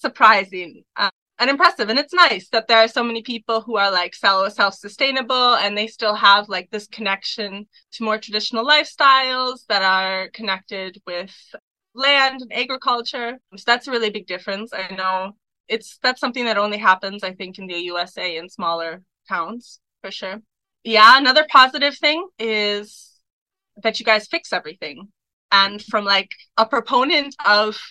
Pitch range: 195-245 Hz